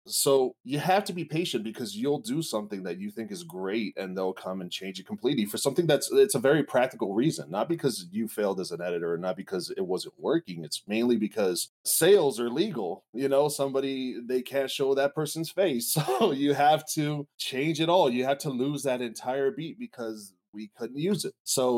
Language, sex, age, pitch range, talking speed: English, male, 30-49, 110-155 Hz, 215 wpm